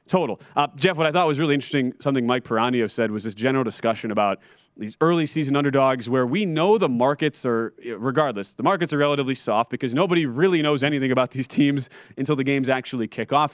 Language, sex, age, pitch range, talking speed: English, male, 30-49, 120-155 Hz, 215 wpm